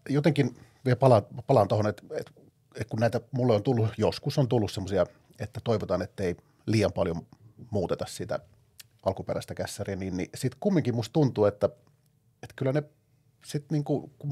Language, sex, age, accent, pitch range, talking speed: Finnish, male, 40-59, native, 110-140 Hz, 170 wpm